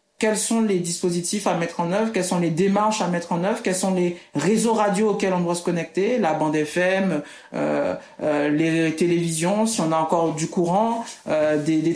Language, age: French, 50-69